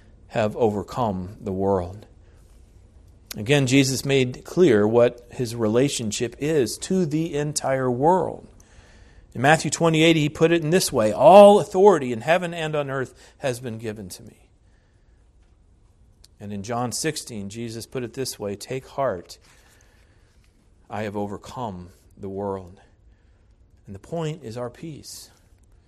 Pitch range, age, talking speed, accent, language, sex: 95-125 Hz, 40-59, 135 wpm, American, English, male